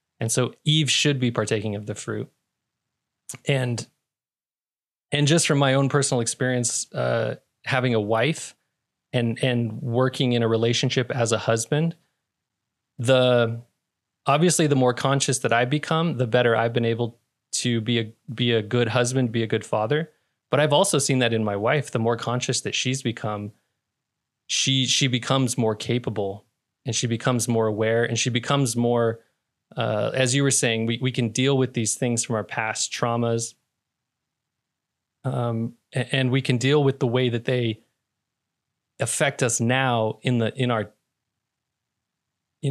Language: English